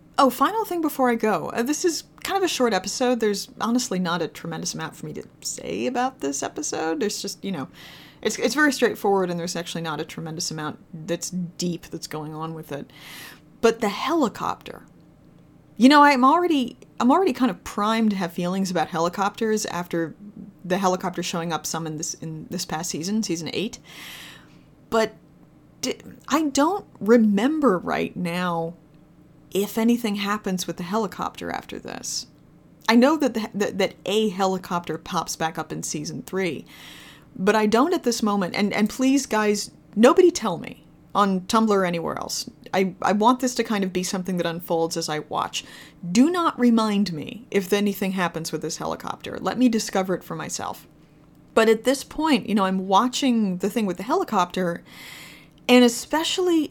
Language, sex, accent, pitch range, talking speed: English, female, American, 175-245 Hz, 180 wpm